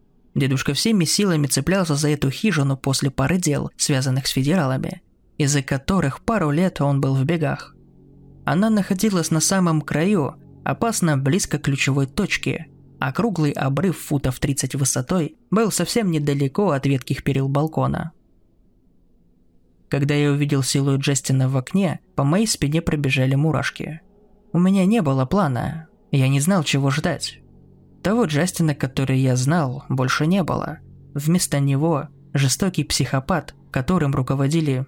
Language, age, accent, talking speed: Russian, 20-39, native, 140 wpm